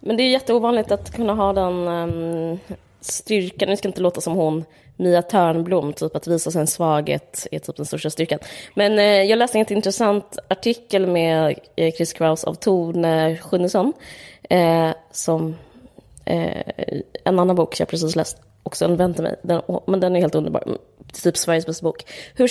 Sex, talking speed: female, 180 wpm